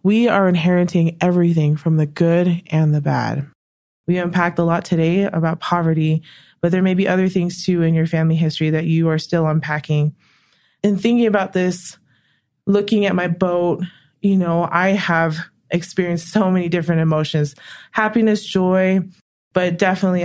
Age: 20-39